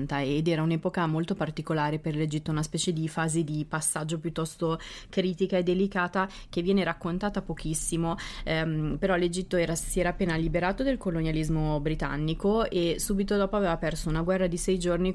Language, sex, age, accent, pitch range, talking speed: Italian, female, 20-39, native, 160-190 Hz, 165 wpm